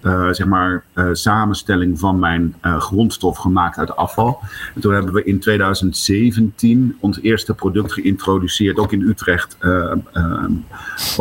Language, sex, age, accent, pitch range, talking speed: Dutch, male, 50-69, Dutch, 95-105 Hz, 145 wpm